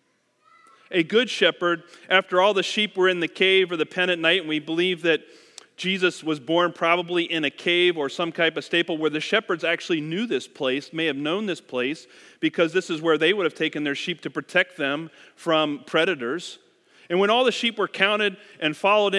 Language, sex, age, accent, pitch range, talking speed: English, male, 40-59, American, 145-185 Hz, 215 wpm